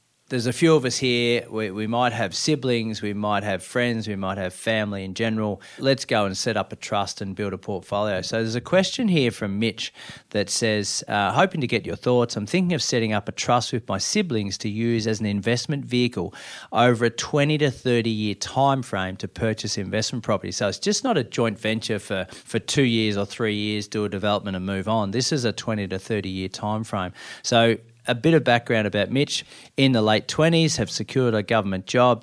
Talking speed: 225 wpm